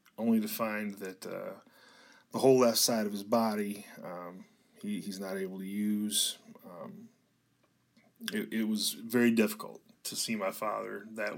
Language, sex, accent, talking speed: English, male, American, 160 wpm